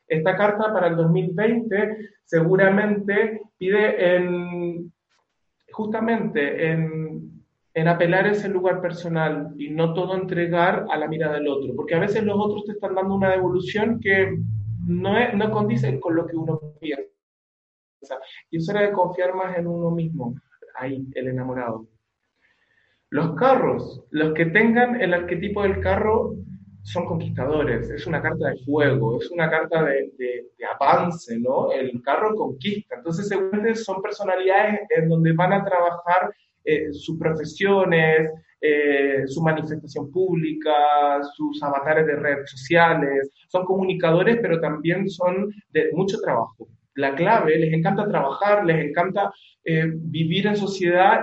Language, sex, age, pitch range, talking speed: Spanish, male, 30-49, 150-195 Hz, 145 wpm